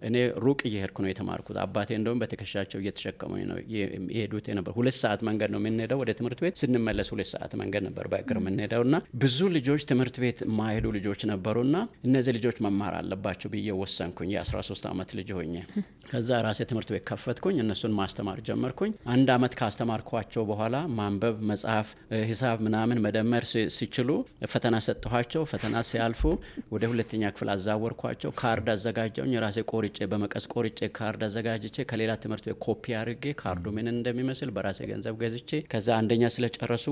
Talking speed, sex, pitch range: 110 wpm, male, 105-120 Hz